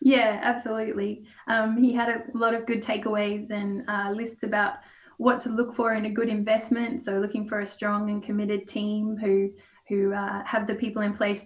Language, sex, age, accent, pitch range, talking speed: English, female, 10-29, Australian, 205-225 Hz, 200 wpm